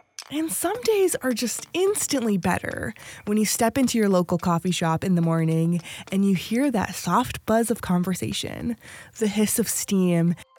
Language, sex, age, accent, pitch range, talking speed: English, female, 20-39, American, 175-235 Hz, 170 wpm